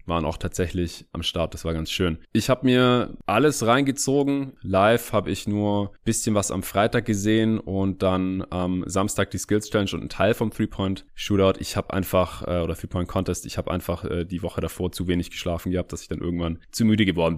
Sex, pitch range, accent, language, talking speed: male, 85-110 Hz, German, German, 200 wpm